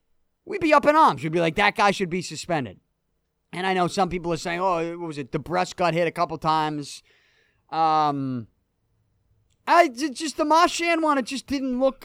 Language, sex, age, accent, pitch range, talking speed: English, male, 30-49, American, 170-255 Hz, 205 wpm